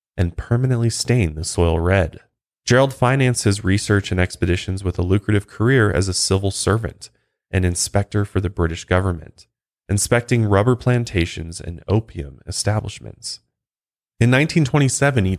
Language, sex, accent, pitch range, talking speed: English, male, American, 90-120 Hz, 135 wpm